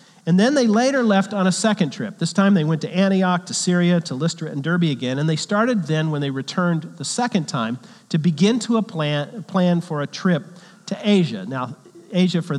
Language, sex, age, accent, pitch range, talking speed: English, male, 40-59, American, 155-195 Hz, 215 wpm